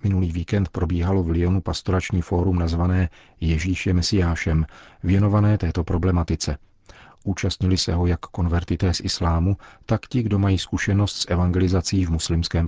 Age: 40-59